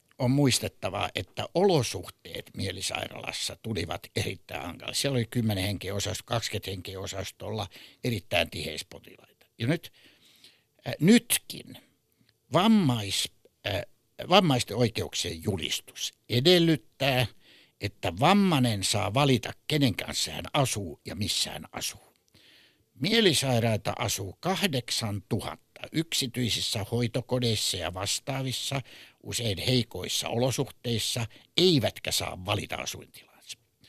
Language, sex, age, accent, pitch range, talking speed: Finnish, male, 60-79, native, 105-135 Hz, 85 wpm